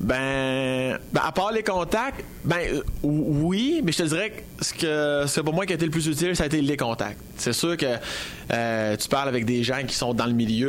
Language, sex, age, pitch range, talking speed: French, male, 20-39, 120-140 Hz, 245 wpm